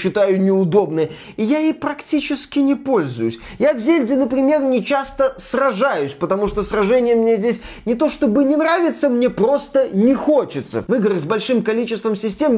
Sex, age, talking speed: male, 20-39, 160 wpm